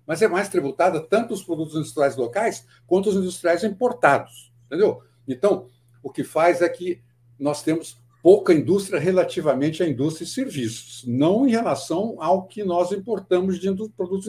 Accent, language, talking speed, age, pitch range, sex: Brazilian, Portuguese, 160 wpm, 60-79, 120-180 Hz, male